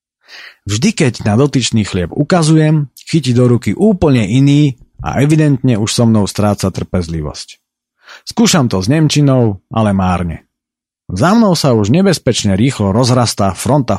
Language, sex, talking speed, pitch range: Slovak, male, 135 wpm, 105-145 Hz